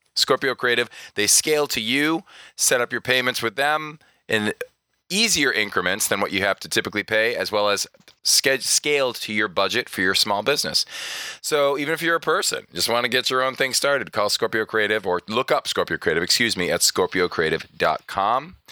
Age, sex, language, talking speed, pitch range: 20-39, male, English, 190 wpm, 120-155 Hz